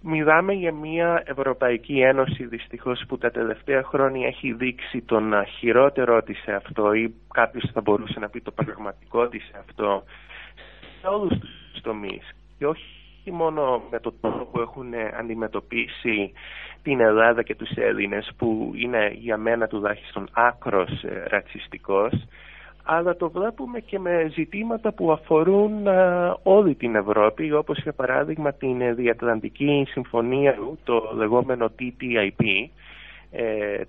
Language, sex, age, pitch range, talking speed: English, male, 20-39, 110-140 Hz, 130 wpm